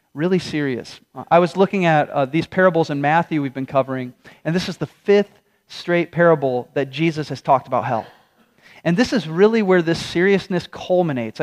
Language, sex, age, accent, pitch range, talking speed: English, male, 30-49, American, 140-185 Hz, 185 wpm